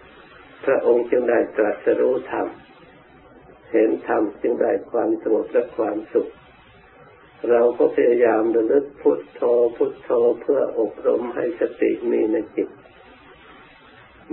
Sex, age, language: male, 60-79, Thai